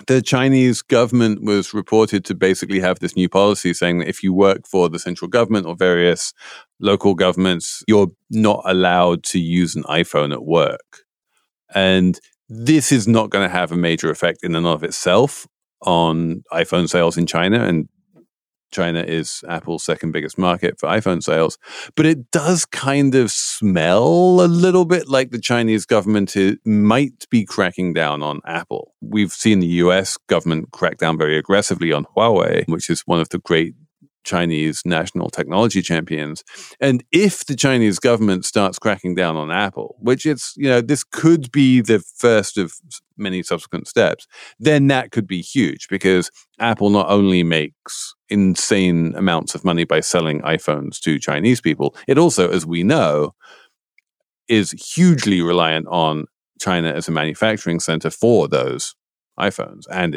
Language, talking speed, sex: English, 165 wpm, male